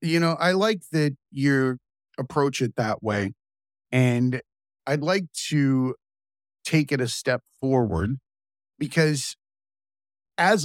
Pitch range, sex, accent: 130-165 Hz, male, American